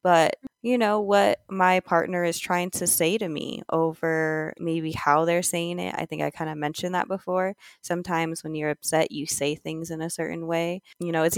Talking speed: 210 wpm